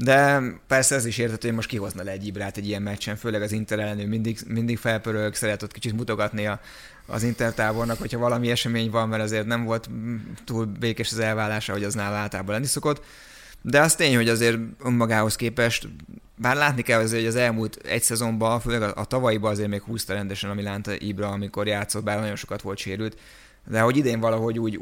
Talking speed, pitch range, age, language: 200 wpm, 105-120 Hz, 20-39, Hungarian